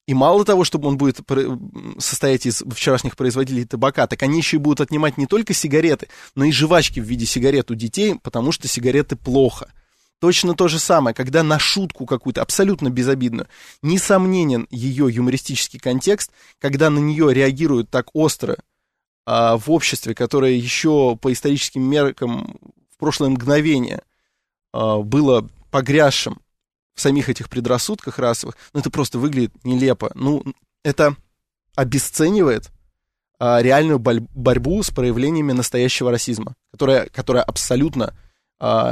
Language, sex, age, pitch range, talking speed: Russian, male, 20-39, 120-145 Hz, 135 wpm